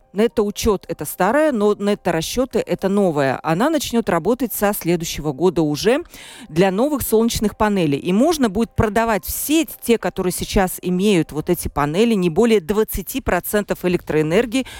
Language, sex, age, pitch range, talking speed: Russian, female, 40-59, 175-230 Hz, 160 wpm